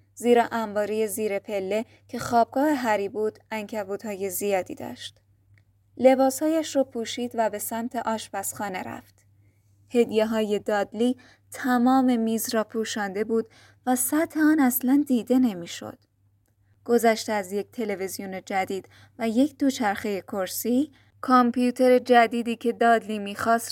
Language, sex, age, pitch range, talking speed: Persian, female, 20-39, 195-245 Hz, 120 wpm